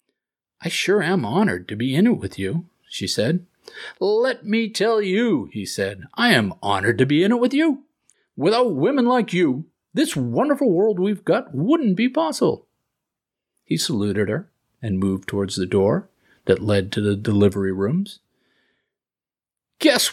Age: 50-69